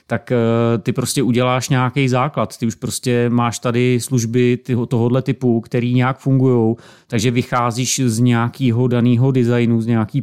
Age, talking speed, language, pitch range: 30-49, 145 wpm, Czech, 120-130 Hz